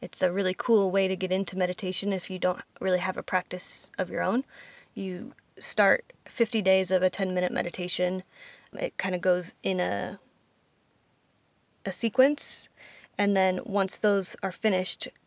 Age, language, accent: 20-39, English, American